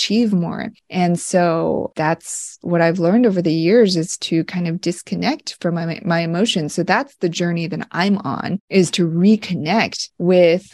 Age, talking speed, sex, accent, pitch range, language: 20-39, 175 wpm, female, American, 170-205 Hz, English